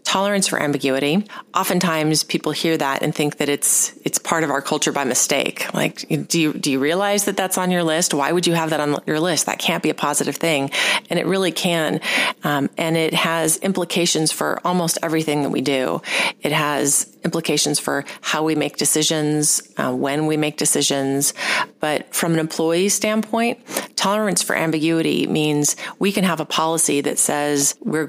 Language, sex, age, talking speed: English, female, 30-49, 190 wpm